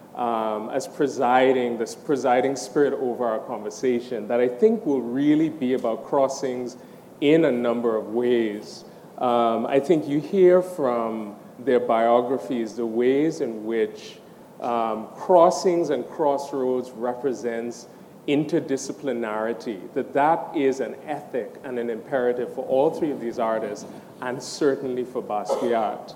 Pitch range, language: 120-150 Hz, English